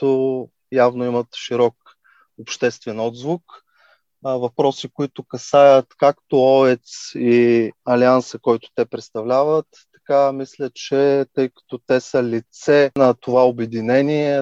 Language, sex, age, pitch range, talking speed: Bulgarian, male, 30-49, 125-145 Hz, 110 wpm